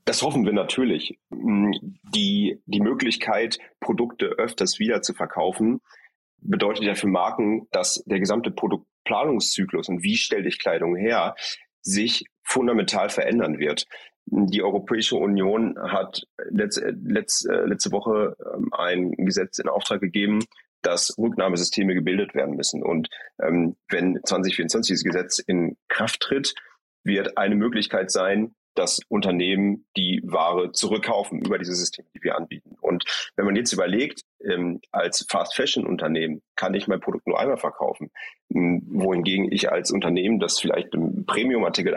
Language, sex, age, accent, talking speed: German, male, 30-49, German, 135 wpm